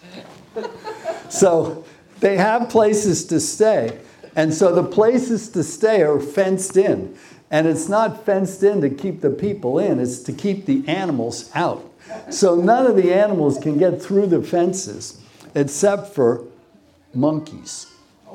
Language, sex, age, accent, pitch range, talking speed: English, male, 60-79, American, 140-195 Hz, 145 wpm